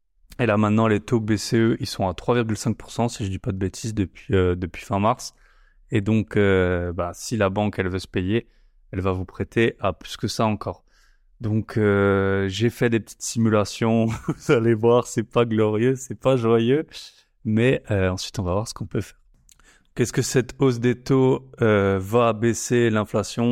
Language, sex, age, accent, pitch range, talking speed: French, male, 20-39, French, 100-115 Hz, 195 wpm